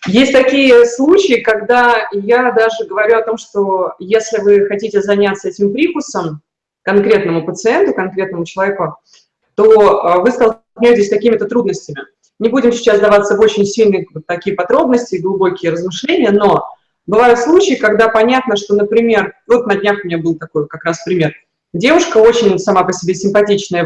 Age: 20-39